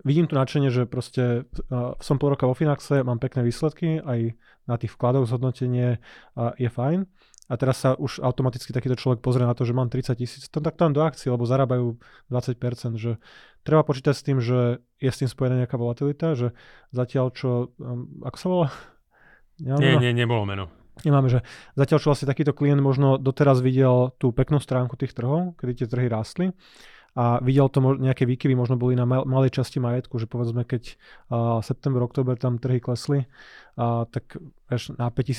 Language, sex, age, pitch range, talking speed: Slovak, male, 20-39, 120-135 Hz, 185 wpm